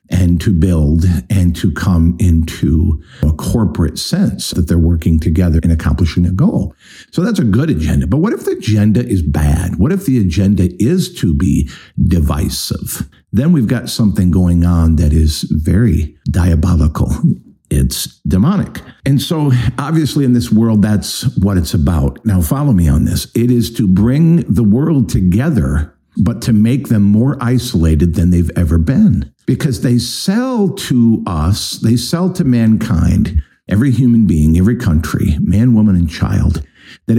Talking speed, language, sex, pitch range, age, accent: 165 wpm, English, male, 85-120 Hz, 50-69, American